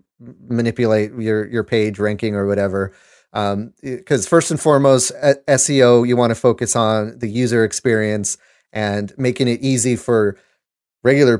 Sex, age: male, 30-49